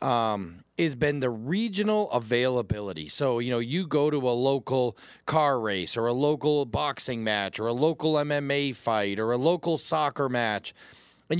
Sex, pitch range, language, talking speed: male, 115-165 Hz, English, 170 wpm